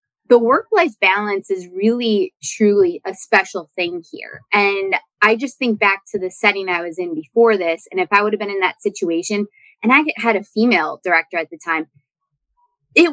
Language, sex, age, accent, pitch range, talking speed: English, female, 20-39, American, 180-220 Hz, 190 wpm